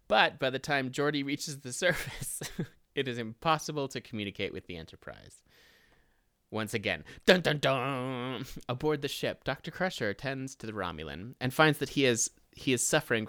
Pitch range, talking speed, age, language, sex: 105-145 Hz, 160 wpm, 30-49, English, male